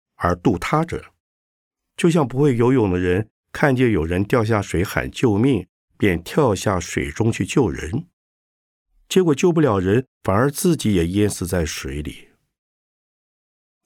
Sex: male